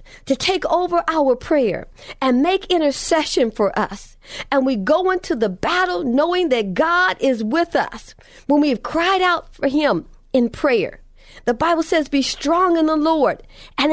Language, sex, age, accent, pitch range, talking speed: English, female, 50-69, American, 240-335 Hz, 170 wpm